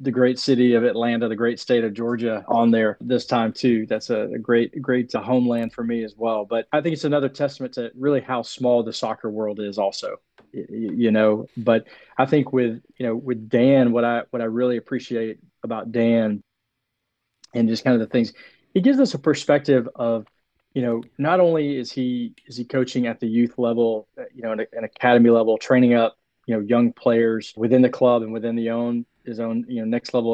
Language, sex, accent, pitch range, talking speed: English, male, American, 115-130 Hz, 215 wpm